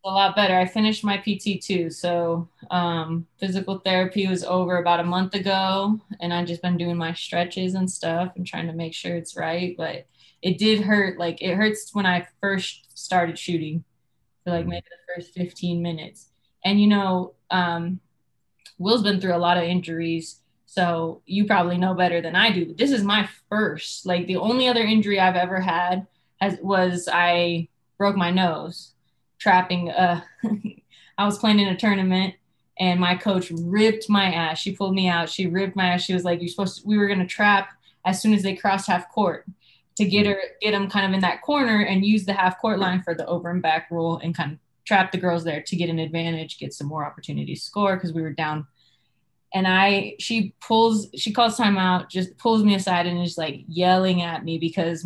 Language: English